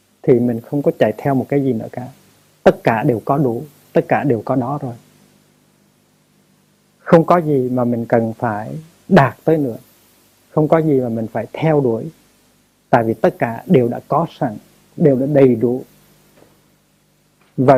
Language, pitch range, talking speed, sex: Vietnamese, 120-155 Hz, 180 wpm, male